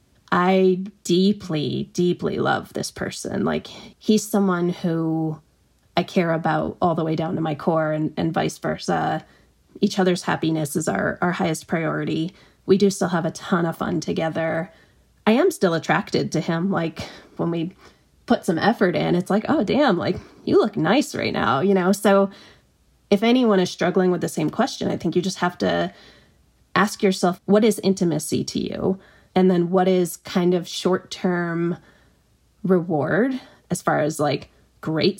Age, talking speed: 30-49, 170 wpm